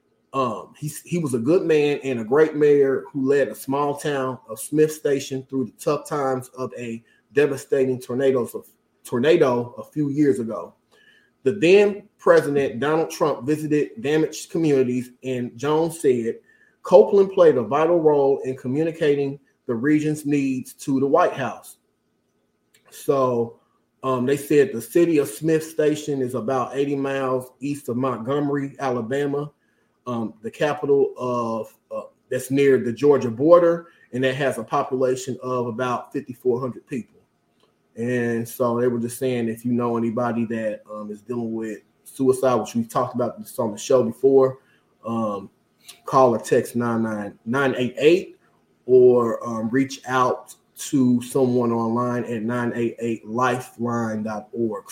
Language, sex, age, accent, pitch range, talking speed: English, male, 30-49, American, 120-145 Hz, 145 wpm